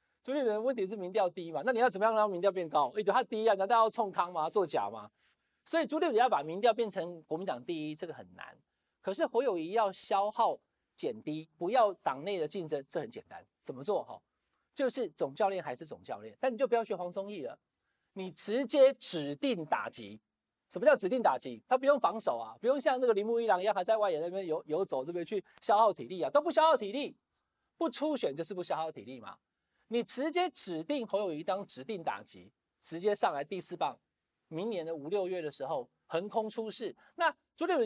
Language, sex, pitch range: Chinese, male, 165-255 Hz